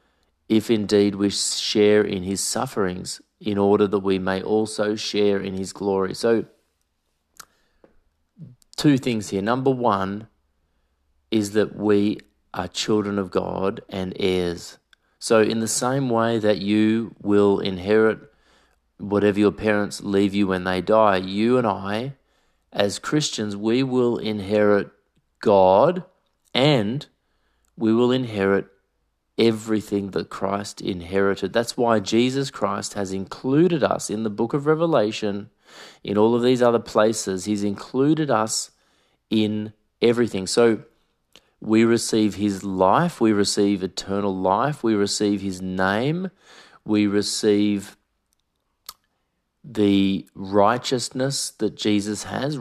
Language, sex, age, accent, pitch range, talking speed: English, male, 30-49, Australian, 100-115 Hz, 125 wpm